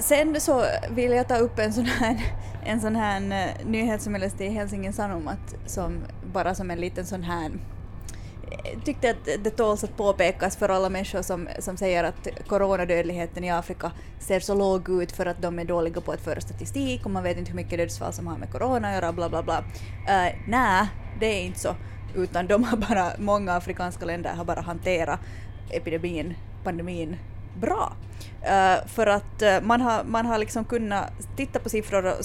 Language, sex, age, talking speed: English, female, 20-39, 190 wpm